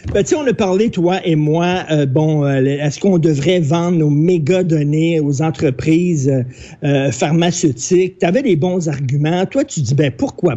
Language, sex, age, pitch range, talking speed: French, male, 50-69, 155-195 Hz, 170 wpm